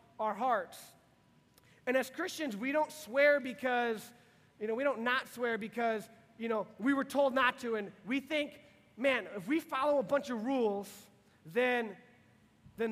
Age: 30-49